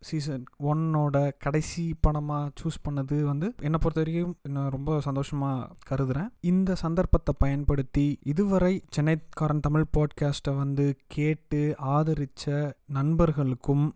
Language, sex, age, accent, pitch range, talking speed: Tamil, male, 30-49, native, 135-160 Hz, 105 wpm